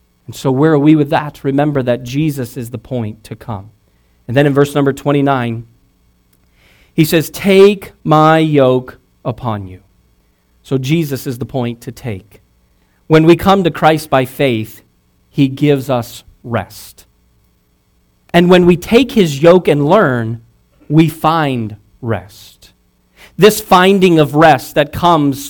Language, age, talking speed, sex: English, 40-59, 150 wpm, male